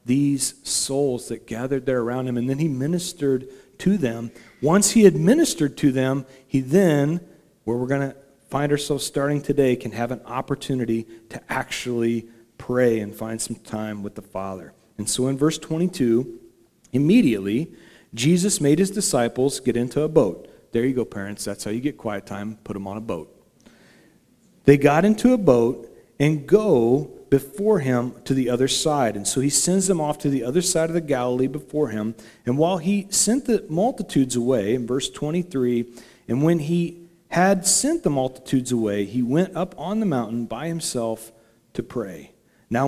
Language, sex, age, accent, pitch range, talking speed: English, male, 40-59, American, 120-170 Hz, 180 wpm